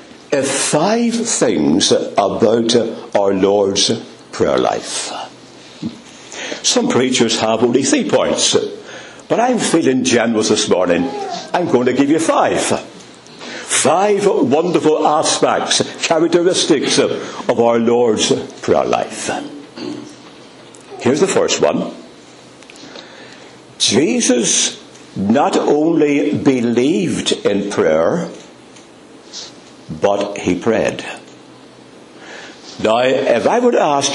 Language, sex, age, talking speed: English, male, 60-79, 90 wpm